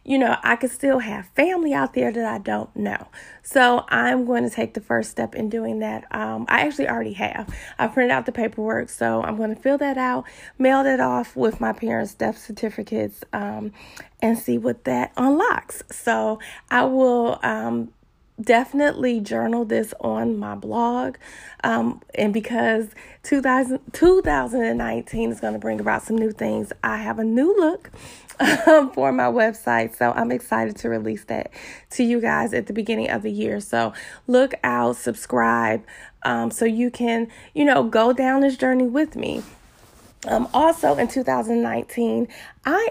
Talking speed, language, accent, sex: 180 wpm, English, American, female